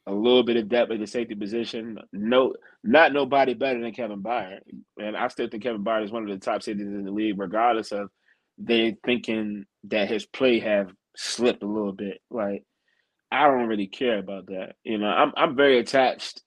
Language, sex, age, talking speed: English, male, 20-39, 205 wpm